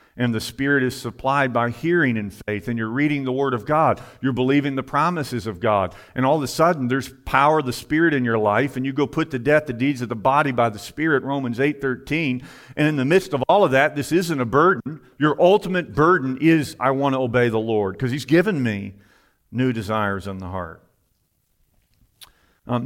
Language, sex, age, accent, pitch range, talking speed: English, male, 50-69, American, 110-140 Hz, 220 wpm